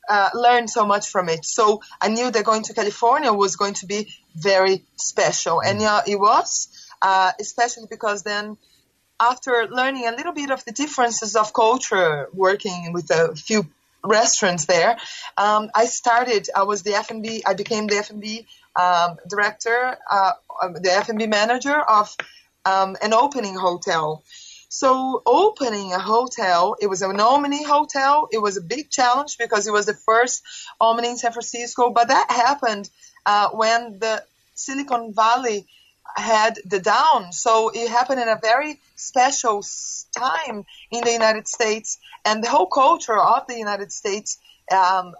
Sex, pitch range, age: female, 195-235 Hz, 20-39